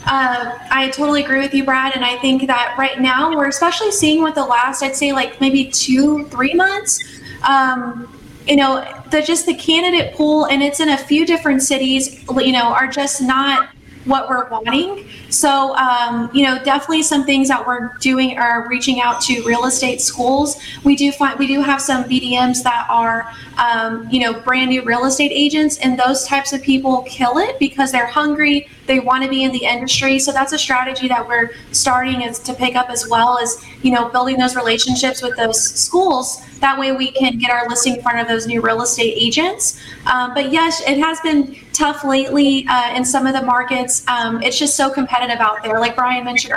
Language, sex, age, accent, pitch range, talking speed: English, female, 20-39, American, 250-280 Hz, 205 wpm